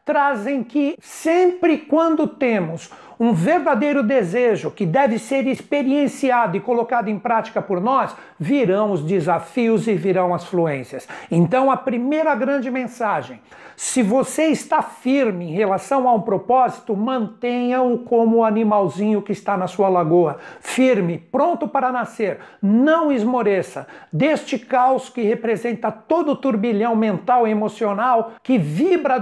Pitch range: 210-270 Hz